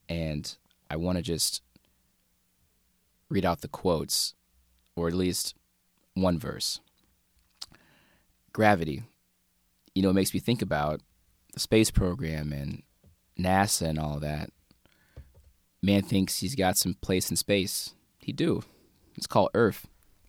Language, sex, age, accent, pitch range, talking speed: English, male, 20-39, American, 80-95 Hz, 125 wpm